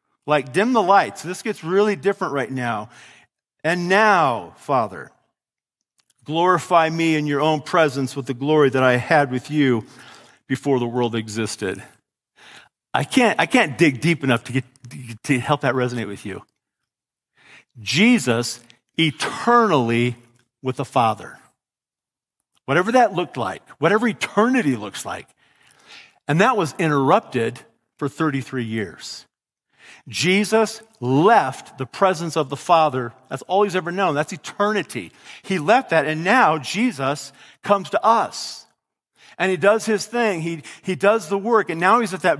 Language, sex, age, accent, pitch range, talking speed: English, male, 50-69, American, 135-195 Hz, 145 wpm